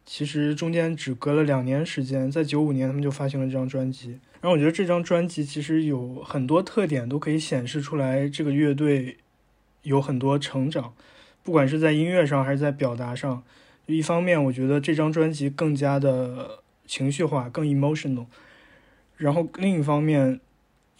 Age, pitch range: 20-39, 135-160 Hz